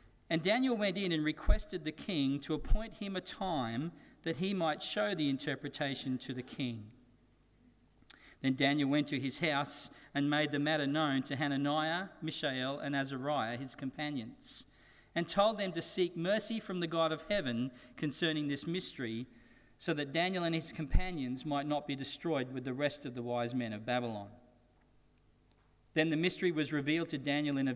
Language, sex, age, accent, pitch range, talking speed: English, male, 40-59, Australian, 135-165 Hz, 175 wpm